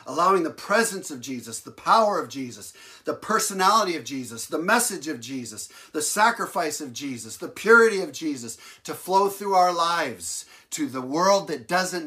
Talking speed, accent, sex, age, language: 175 wpm, American, male, 50-69, English